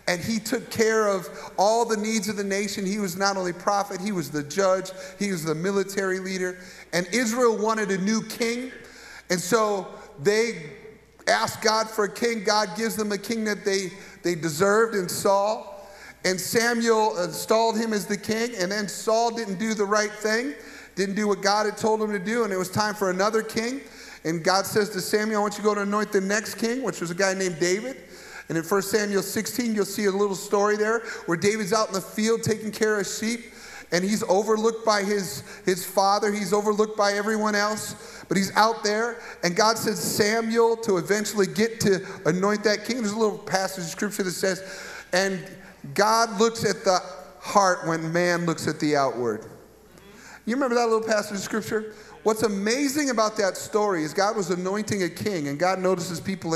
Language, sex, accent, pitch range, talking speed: English, male, American, 190-220 Hz, 205 wpm